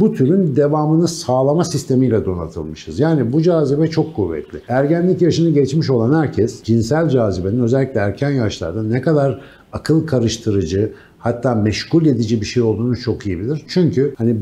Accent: native